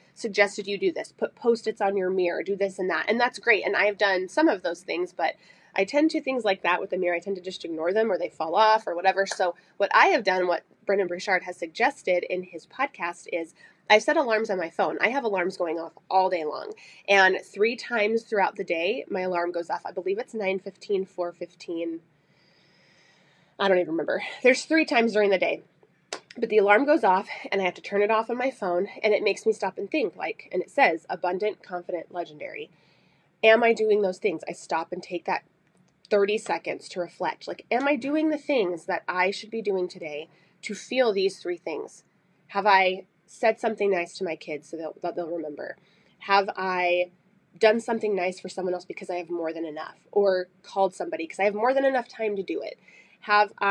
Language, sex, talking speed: English, female, 220 wpm